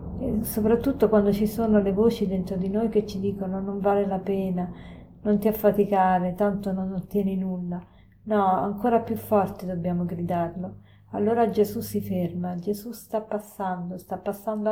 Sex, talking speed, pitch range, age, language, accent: female, 155 wpm, 190-220 Hz, 40-59, Italian, native